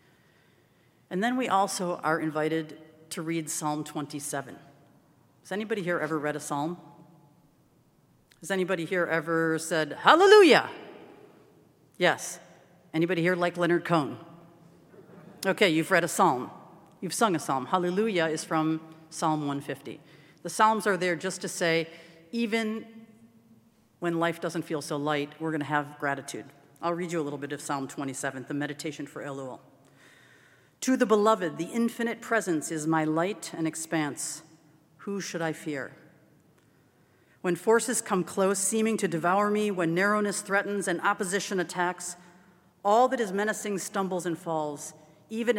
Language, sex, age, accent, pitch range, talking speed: English, female, 40-59, American, 160-200 Hz, 145 wpm